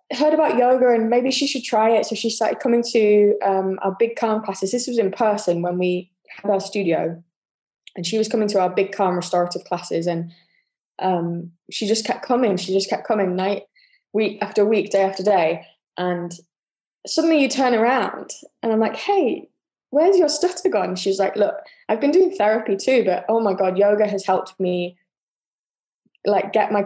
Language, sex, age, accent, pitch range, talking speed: English, female, 20-39, British, 190-245 Hz, 195 wpm